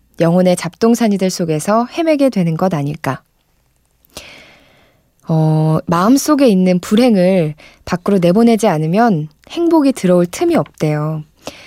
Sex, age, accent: female, 20-39, native